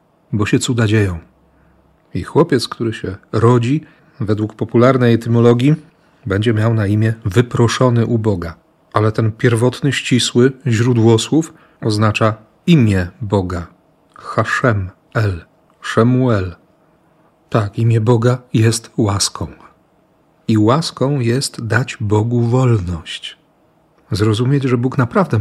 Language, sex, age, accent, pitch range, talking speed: Polish, male, 40-59, native, 110-130 Hz, 110 wpm